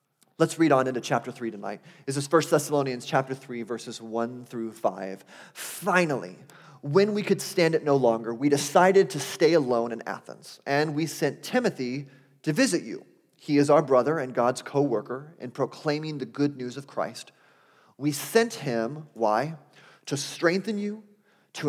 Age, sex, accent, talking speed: 30-49, male, American, 170 wpm